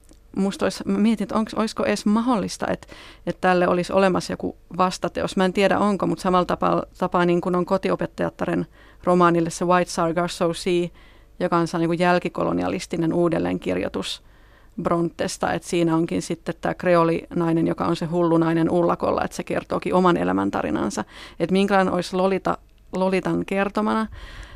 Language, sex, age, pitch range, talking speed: Finnish, female, 30-49, 170-195 Hz, 150 wpm